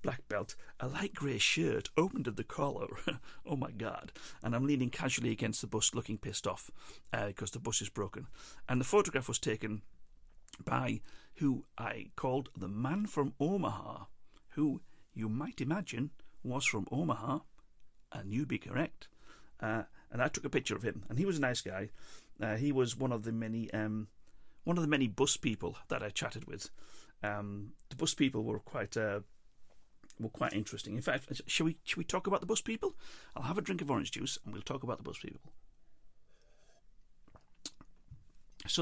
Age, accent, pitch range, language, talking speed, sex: 40-59, British, 110-140 Hz, English, 185 wpm, male